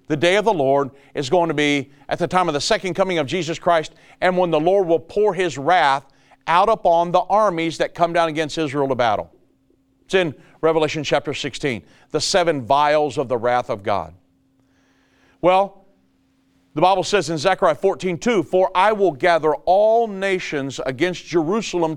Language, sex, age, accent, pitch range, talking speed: English, male, 40-59, American, 140-185 Hz, 180 wpm